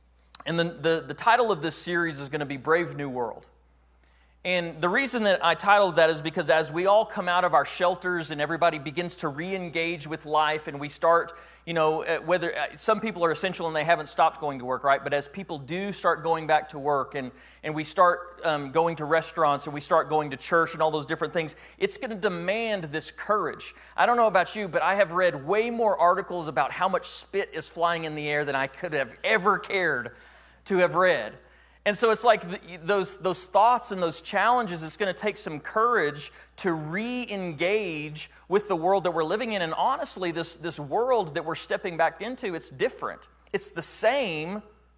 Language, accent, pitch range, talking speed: English, American, 150-195 Hz, 215 wpm